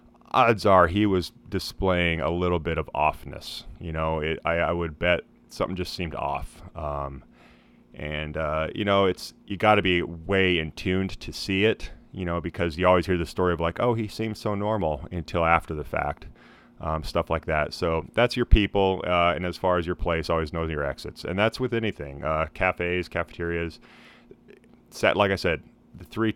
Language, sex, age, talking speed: English, male, 30-49, 200 wpm